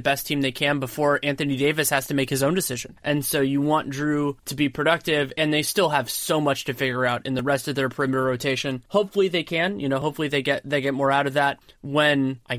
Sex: male